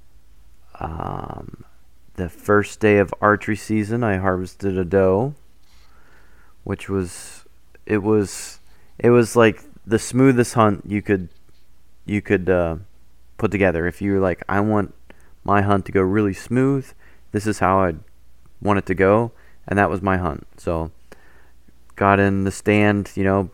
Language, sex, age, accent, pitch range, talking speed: English, male, 20-39, American, 80-105 Hz, 155 wpm